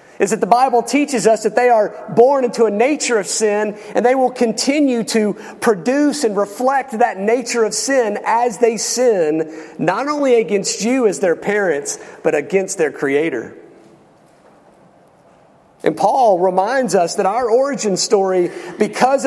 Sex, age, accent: male, 40-59, American